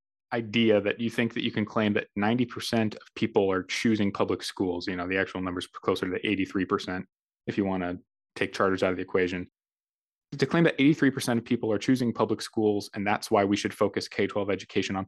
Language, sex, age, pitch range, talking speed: English, male, 20-39, 95-120 Hz, 220 wpm